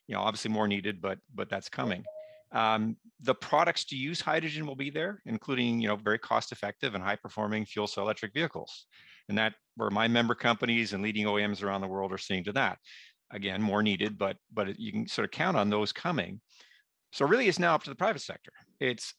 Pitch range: 105-130 Hz